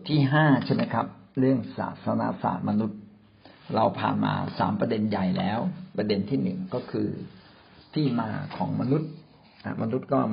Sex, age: male, 60-79